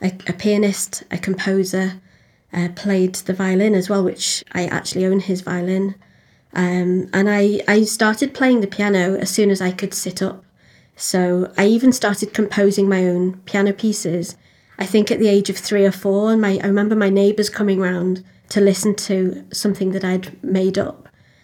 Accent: British